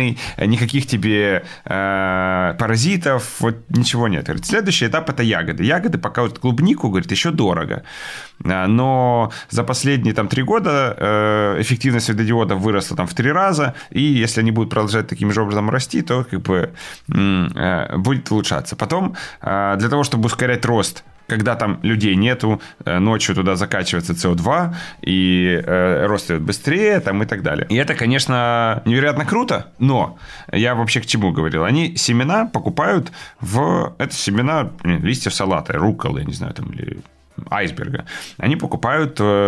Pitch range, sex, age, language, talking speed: 95-125 Hz, male, 30-49, Ukrainian, 145 wpm